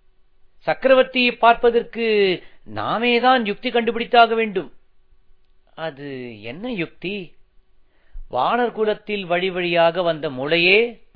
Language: Tamil